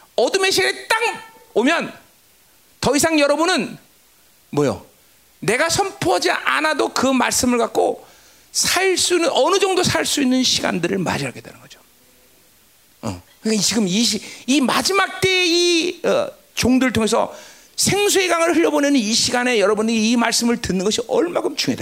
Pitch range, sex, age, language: 220-365 Hz, male, 40-59, Korean